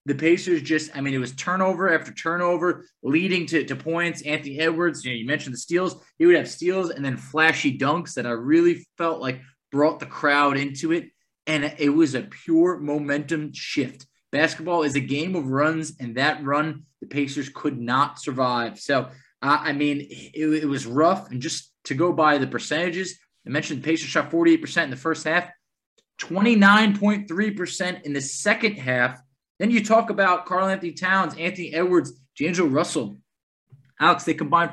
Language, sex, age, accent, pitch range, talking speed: English, male, 20-39, American, 145-185 Hz, 180 wpm